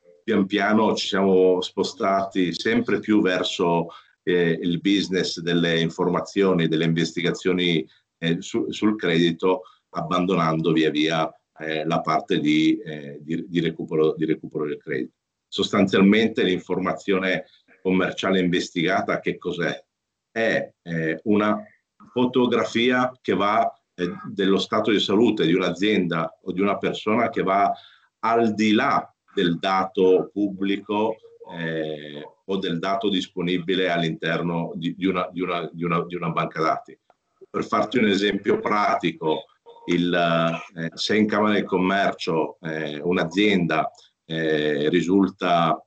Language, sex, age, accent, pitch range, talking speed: Italian, male, 50-69, native, 85-100 Hz, 115 wpm